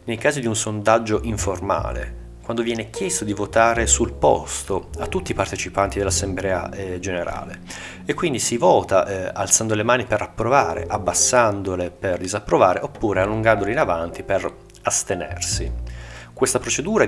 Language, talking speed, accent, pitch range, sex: Italian, 145 wpm, native, 90-110 Hz, male